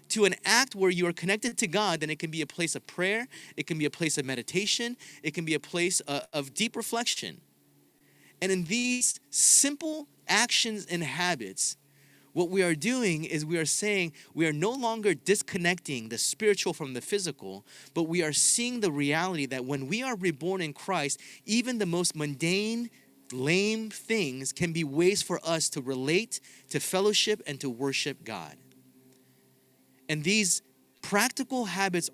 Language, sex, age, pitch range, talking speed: English, male, 30-49, 130-190 Hz, 175 wpm